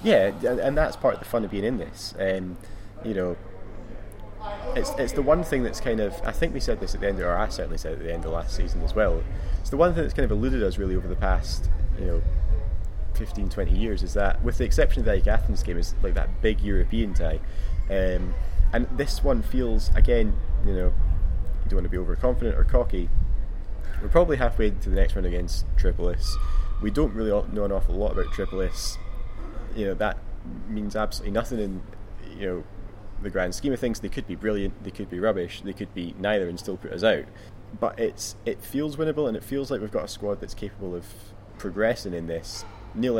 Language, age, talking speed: English, 20-39, 225 wpm